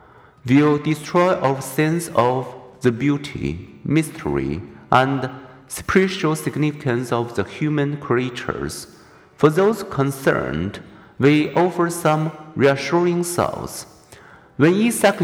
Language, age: Chinese, 50-69